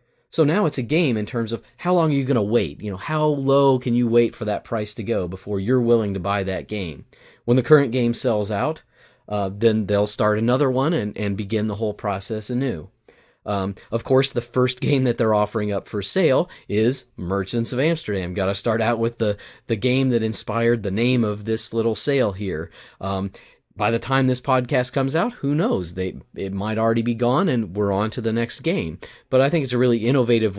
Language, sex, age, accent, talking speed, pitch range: English, male, 30-49, American, 220 wpm, 105-130 Hz